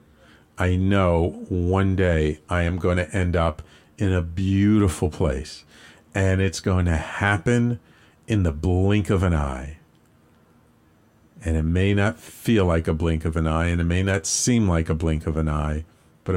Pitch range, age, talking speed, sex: 80-120 Hz, 50-69, 175 wpm, male